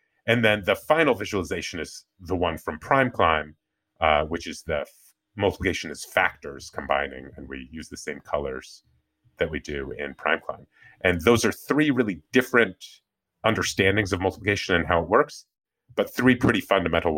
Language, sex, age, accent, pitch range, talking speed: English, male, 30-49, American, 90-120 Hz, 170 wpm